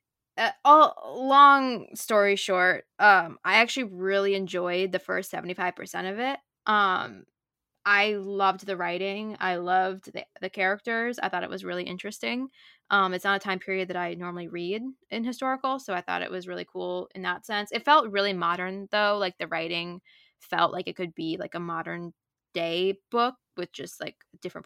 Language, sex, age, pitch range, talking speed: English, female, 10-29, 180-210 Hz, 180 wpm